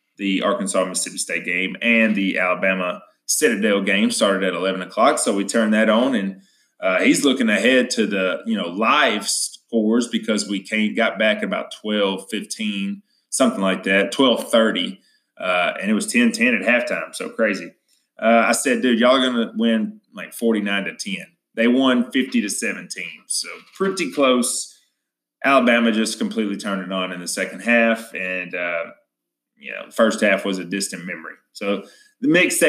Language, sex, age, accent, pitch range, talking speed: English, male, 30-49, American, 95-145 Hz, 180 wpm